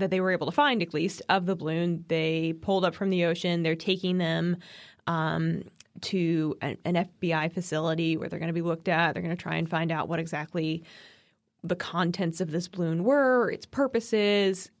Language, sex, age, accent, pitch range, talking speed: English, female, 20-39, American, 170-205 Hz, 205 wpm